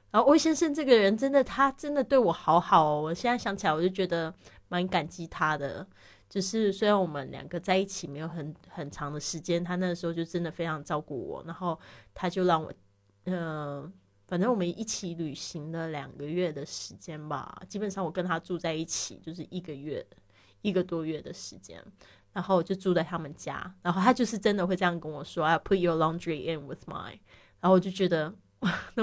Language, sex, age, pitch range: Chinese, female, 20-39, 160-195 Hz